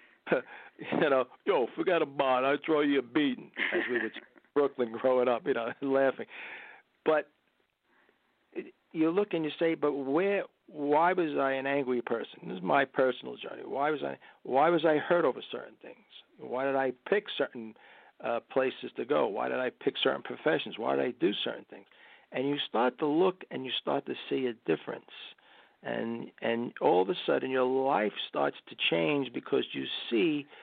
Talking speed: 190 wpm